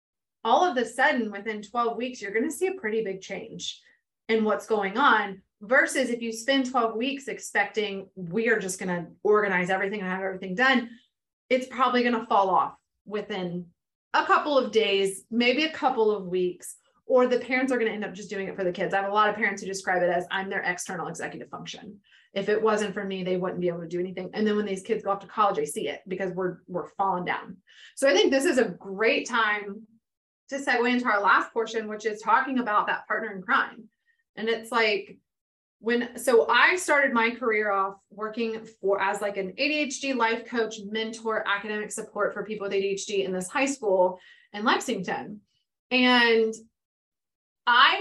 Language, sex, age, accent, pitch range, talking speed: English, female, 30-49, American, 200-245 Hz, 205 wpm